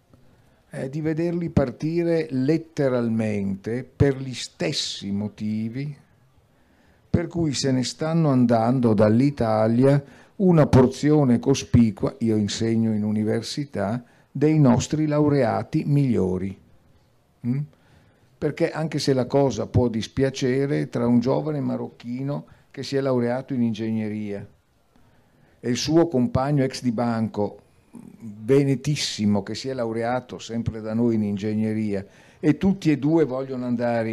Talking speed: 115 wpm